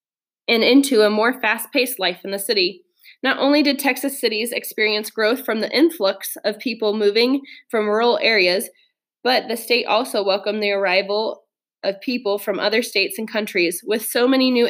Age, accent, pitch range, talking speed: 20-39, American, 200-245 Hz, 175 wpm